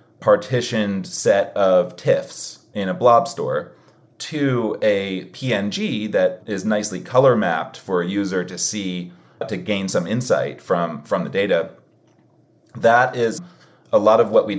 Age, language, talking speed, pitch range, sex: 30-49, English, 150 wpm, 95-135 Hz, male